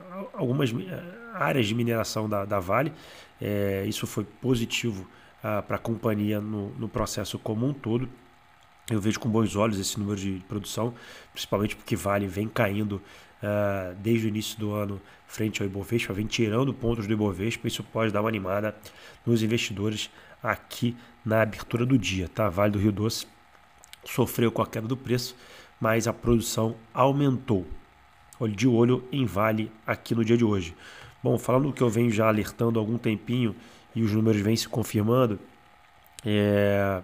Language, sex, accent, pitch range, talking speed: Portuguese, male, Brazilian, 105-120 Hz, 160 wpm